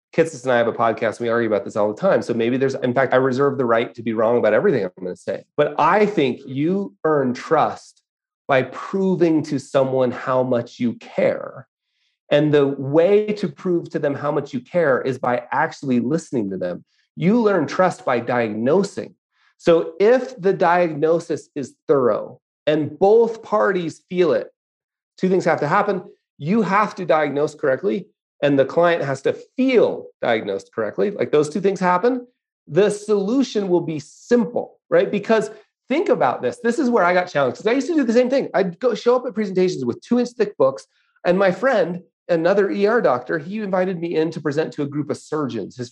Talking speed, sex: 200 wpm, male